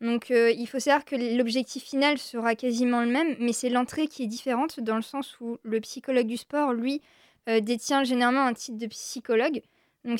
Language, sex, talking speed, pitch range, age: French, female, 205 wpm, 230-275 Hz, 20-39